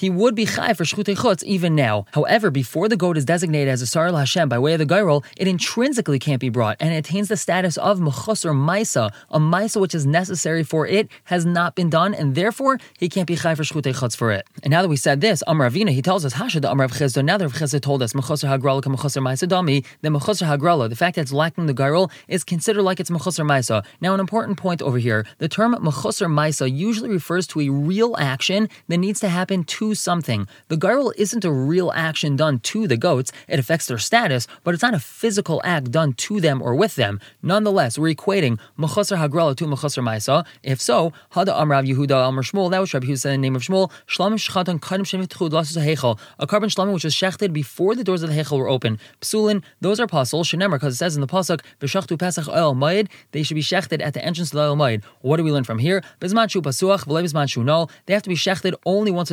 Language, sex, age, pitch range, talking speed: English, male, 20-39, 140-190 Hz, 205 wpm